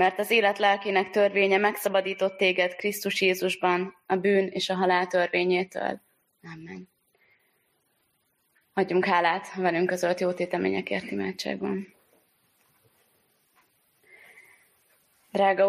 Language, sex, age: Hungarian, female, 20-39